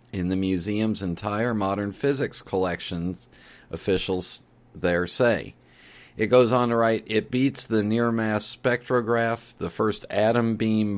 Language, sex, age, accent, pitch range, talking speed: English, male, 40-59, American, 95-115 Hz, 125 wpm